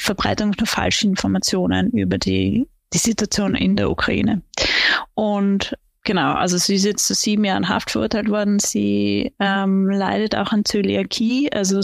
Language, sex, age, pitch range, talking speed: German, female, 30-49, 195-225 Hz, 150 wpm